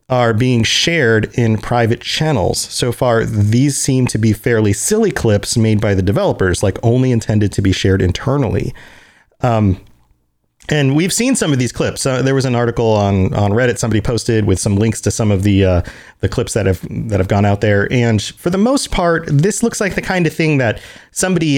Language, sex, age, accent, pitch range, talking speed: English, male, 30-49, American, 105-135 Hz, 210 wpm